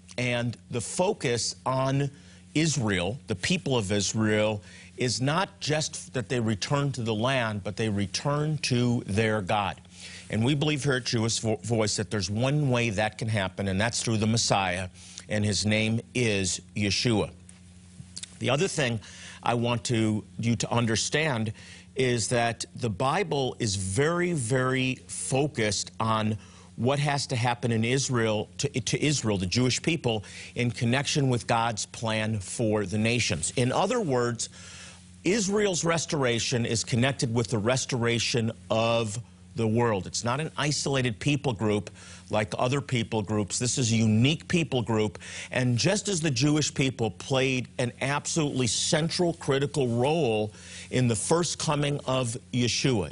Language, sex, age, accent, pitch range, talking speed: English, male, 50-69, American, 105-135 Hz, 150 wpm